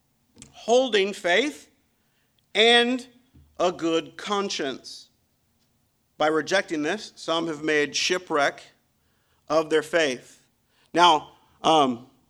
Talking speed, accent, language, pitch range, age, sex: 90 wpm, American, English, 160-225 Hz, 50-69, male